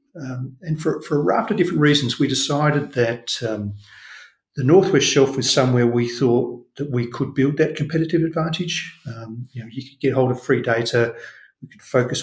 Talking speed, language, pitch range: 195 wpm, English, 120-150 Hz